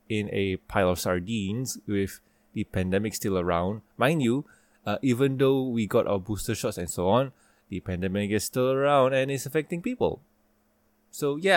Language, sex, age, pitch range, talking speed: English, male, 20-39, 100-130 Hz, 175 wpm